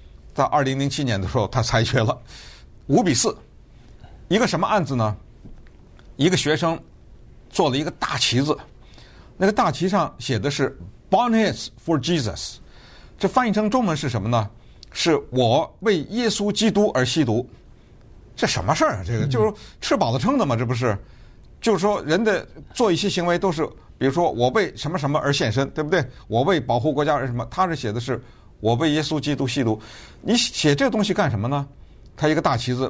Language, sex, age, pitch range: Chinese, male, 50-69, 115-160 Hz